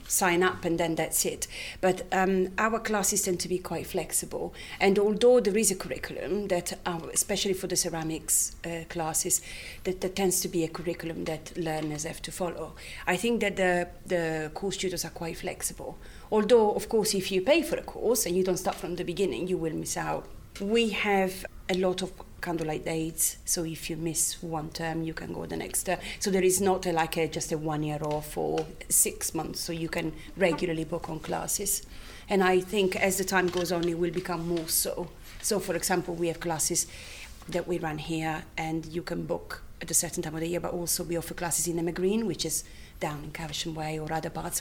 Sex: female